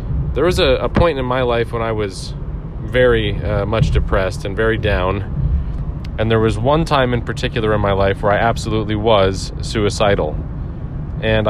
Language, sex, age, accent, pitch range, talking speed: English, male, 30-49, American, 105-125 Hz, 175 wpm